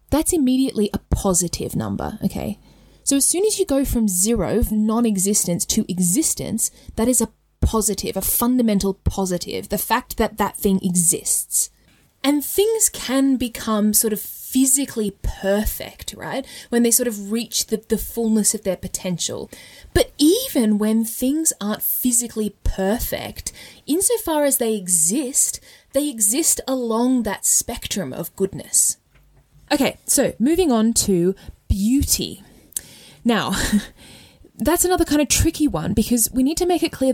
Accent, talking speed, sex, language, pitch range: Australian, 145 wpm, female, English, 205-275 Hz